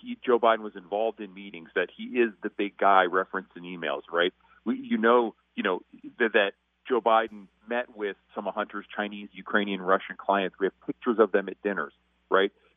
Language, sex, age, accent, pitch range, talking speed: English, male, 40-59, American, 95-120 Hz, 195 wpm